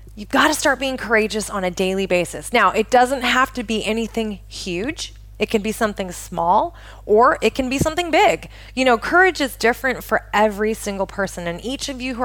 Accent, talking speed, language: American, 210 wpm, English